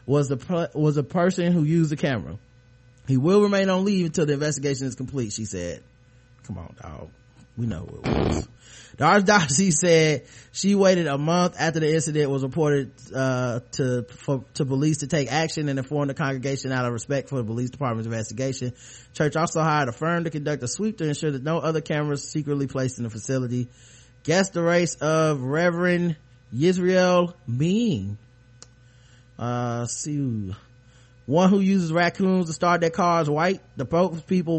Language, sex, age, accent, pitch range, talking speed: English, male, 20-39, American, 125-175 Hz, 175 wpm